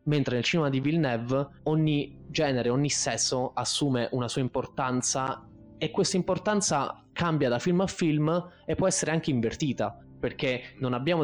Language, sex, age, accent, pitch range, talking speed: Italian, male, 20-39, native, 115-135 Hz, 155 wpm